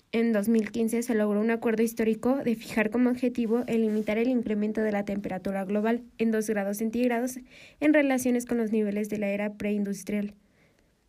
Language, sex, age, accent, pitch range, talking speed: Spanish, female, 20-39, Mexican, 215-245 Hz, 175 wpm